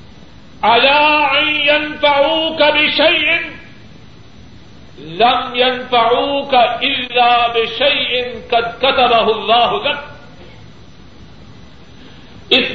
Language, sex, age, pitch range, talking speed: Urdu, male, 50-69, 245-310 Hz, 60 wpm